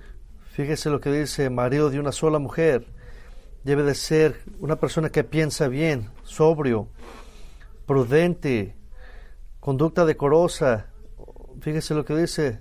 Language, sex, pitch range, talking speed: English, male, 115-150 Hz, 120 wpm